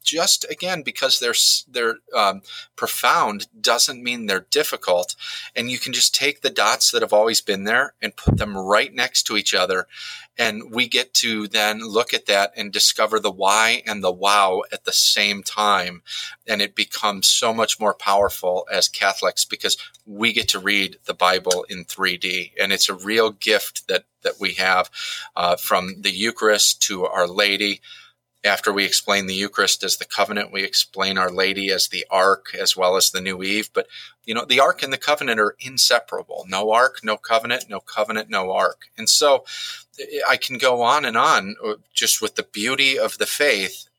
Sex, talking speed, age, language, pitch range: male, 190 wpm, 30-49, English, 100-130 Hz